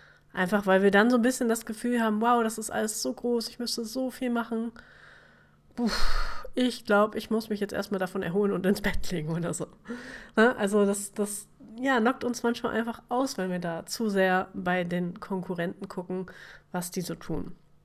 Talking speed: 190 wpm